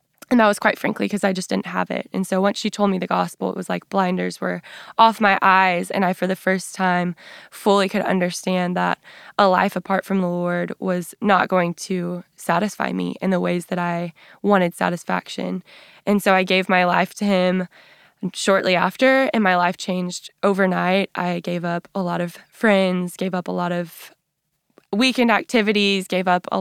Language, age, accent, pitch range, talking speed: English, 20-39, American, 180-200 Hz, 200 wpm